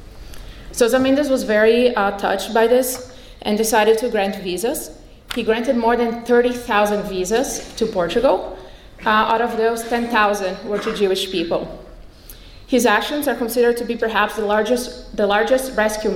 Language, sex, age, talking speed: English, female, 30-49, 150 wpm